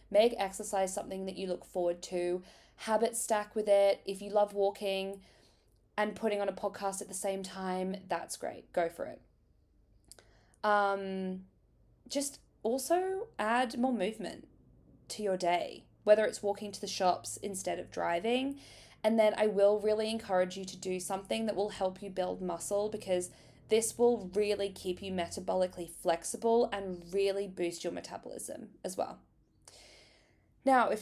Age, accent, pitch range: 20-39, Australian, 185-215 Hz